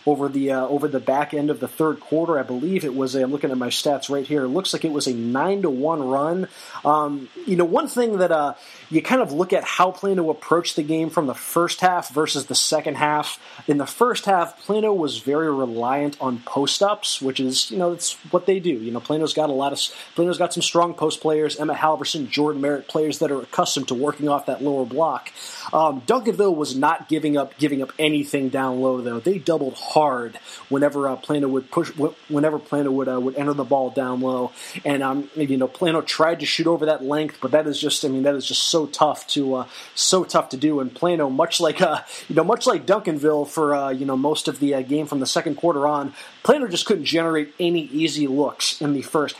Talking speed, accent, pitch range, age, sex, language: 235 wpm, American, 140-165 Hz, 30-49, male, English